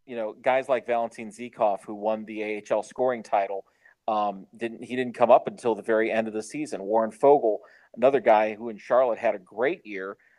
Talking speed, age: 210 wpm, 40-59